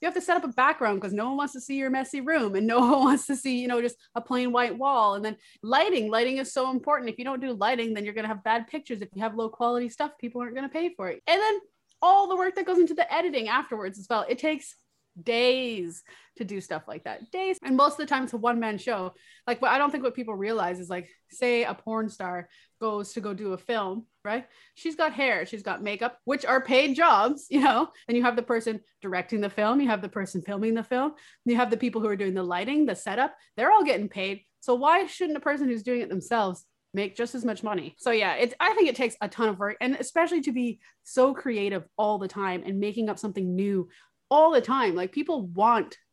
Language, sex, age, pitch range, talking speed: English, female, 20-39, 205-270 Hz, 260 wpm